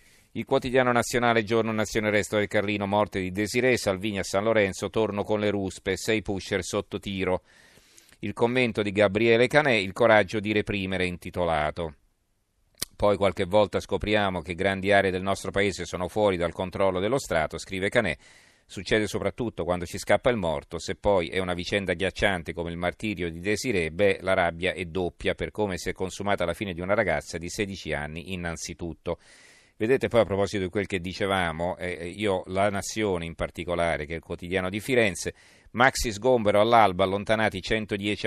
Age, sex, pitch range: 40-59, male, 90-110 Hz